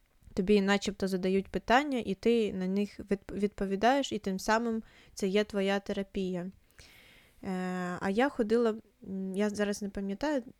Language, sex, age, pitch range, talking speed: Ukrainian, female, 20-39, 190-220 Hz, 130 wpm